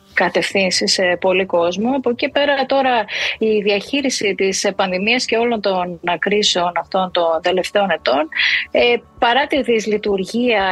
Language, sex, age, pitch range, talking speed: Greek, female, 30-49, 185-240 Hz, 120 wpm